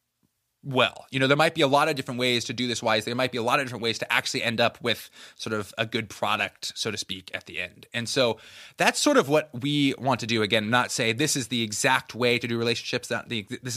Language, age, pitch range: English, 20-39, 110-135 Hz